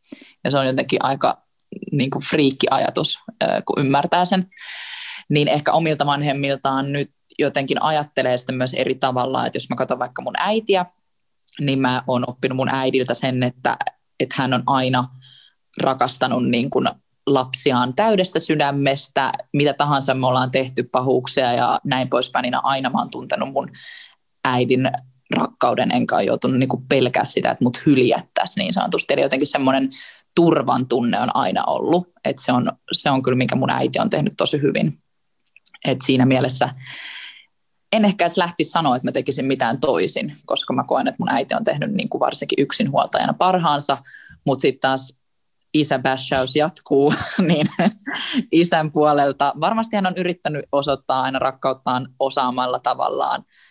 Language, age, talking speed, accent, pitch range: Finnish, 20-39, 150 wpm, native, 130-165 Hz